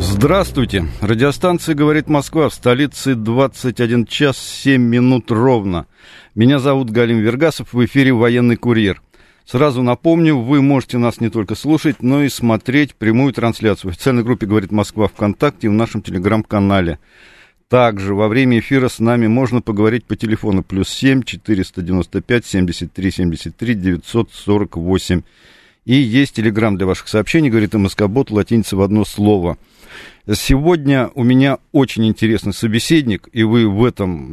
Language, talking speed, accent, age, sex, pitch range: Russian, 140 wpm, native, 50-69, male, 105-130 Hz